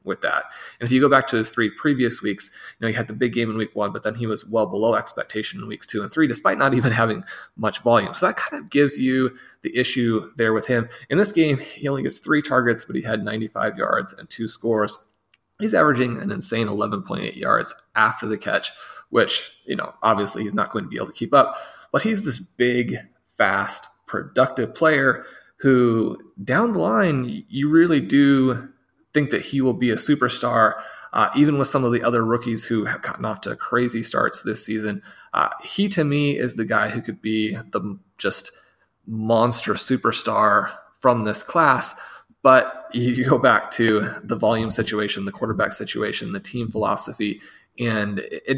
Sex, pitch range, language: male, 110-135 Hz, English